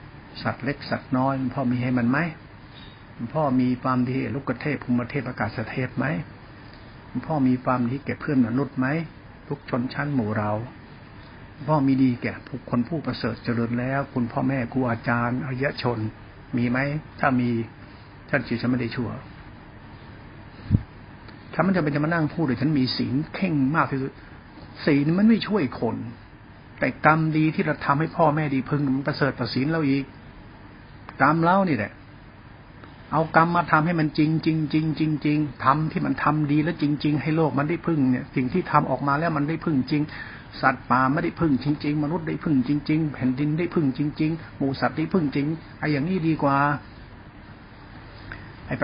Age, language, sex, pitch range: 60-79, Thai, male, 120-150 Hz